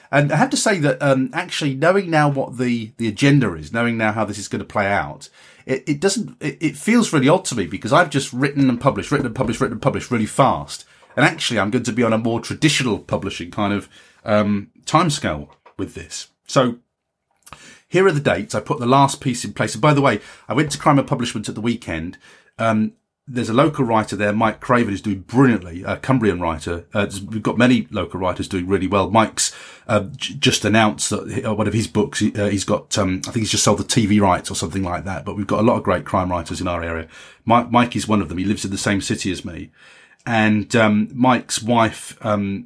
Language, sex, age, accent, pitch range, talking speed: English, male, 30-49, British, 100-130 Hz, 240 wpm